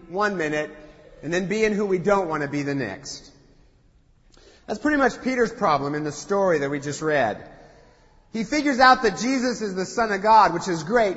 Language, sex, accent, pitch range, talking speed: English, male, American, 165-215 Hz, 210 wpm